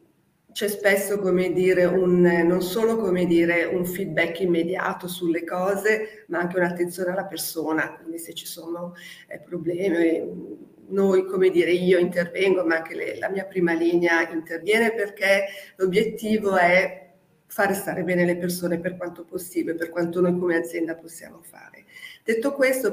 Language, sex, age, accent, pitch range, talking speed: Italian, female, 40-59, native, 170-195 Hz, 150 wpm